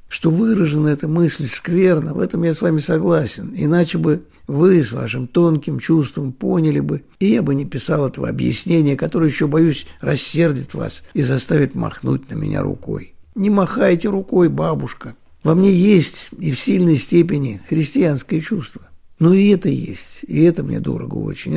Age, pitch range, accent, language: 60-79, 145-180 Hz, native, Russian